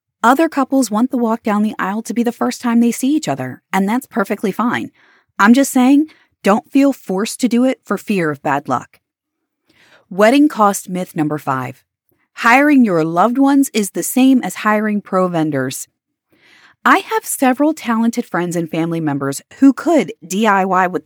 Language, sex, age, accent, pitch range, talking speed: English, female, 30-49, American, 165-255 Hz, 180 wpm